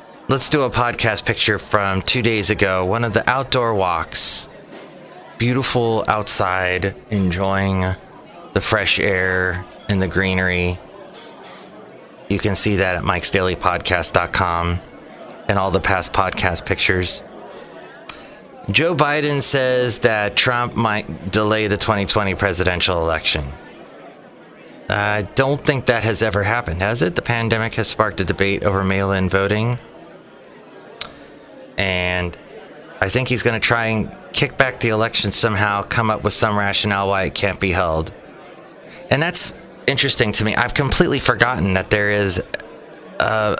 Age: 30-49